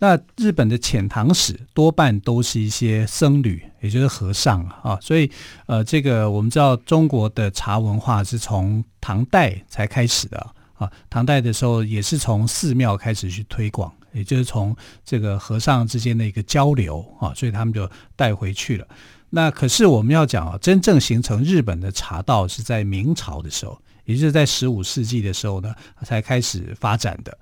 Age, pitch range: 50-69, 105-135 Hz